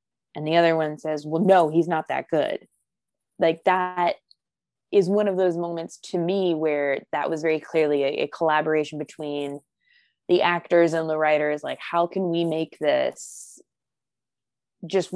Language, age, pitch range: English, 20-39, 155-195 Hz